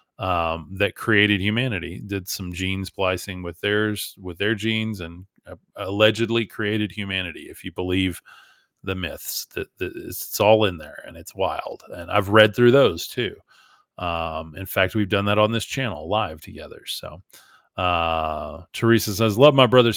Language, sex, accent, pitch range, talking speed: English, male, American, 95-115 Hz, 170 wpm